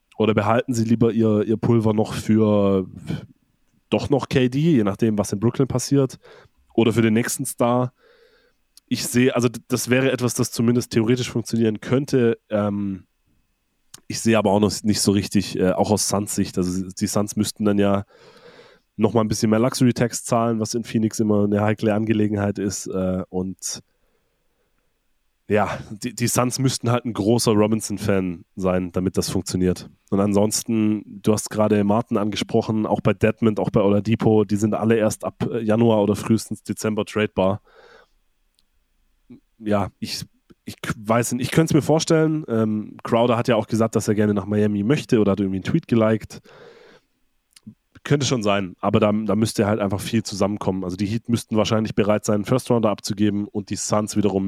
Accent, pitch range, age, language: German, 100-120 Hz, 20-39, German